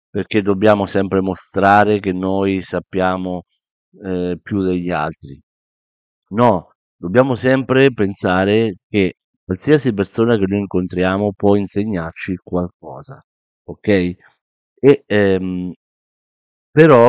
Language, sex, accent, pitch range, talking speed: Italian, male, native, 90-110 Hz, 90 wpm